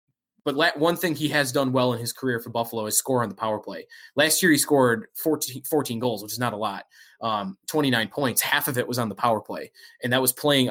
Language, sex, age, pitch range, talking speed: English, male, 20-39, 115-140 Hz, 250 wpm